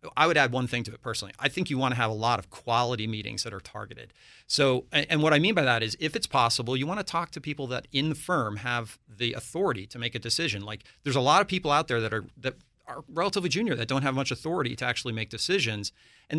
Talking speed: 270 wpm